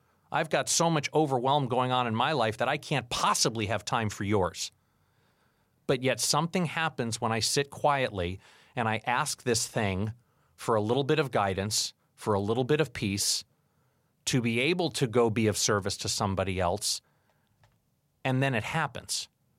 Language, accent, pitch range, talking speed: English, American, 105-135 Hz, 180 wpm